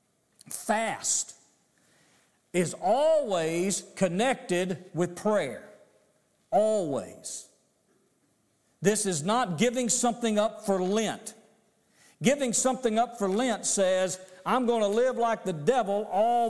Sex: male